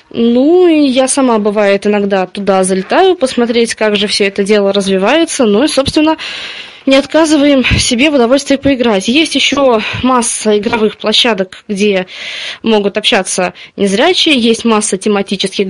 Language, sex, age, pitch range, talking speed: Russian, female, 20-39, 205-270 Hz, 135 wpm